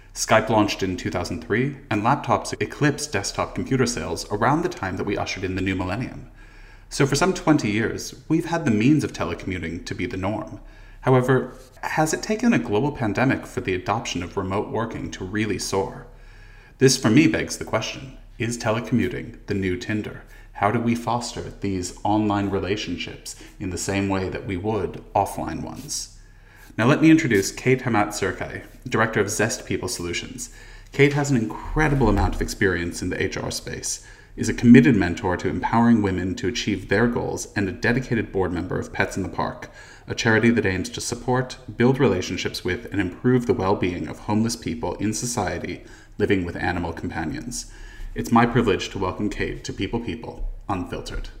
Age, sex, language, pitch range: 30-49, male, English, 95-125 Hz